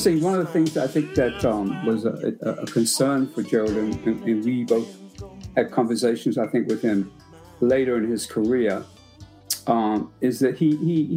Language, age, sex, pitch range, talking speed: English, 50-69, male, 120-155 Hz, 185 wpm